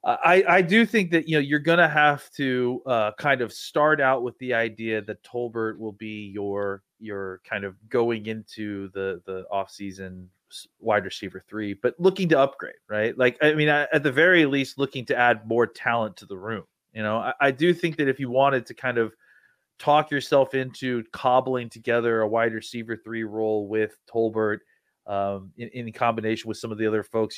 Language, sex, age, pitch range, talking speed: English, male, 30-49, 105-135 Hz, 200 wpm